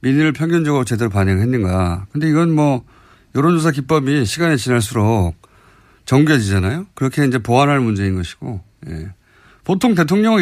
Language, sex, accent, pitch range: Korean, male, native, 105-155 Hz